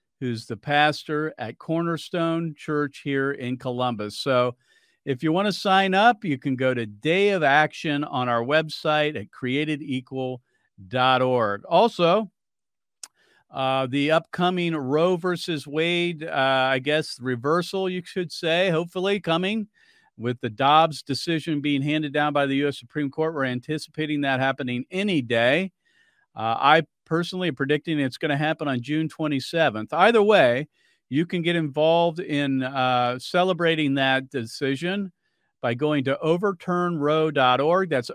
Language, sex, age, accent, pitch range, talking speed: English, male, 50-69, American, 135-175 Hz, 140 wpm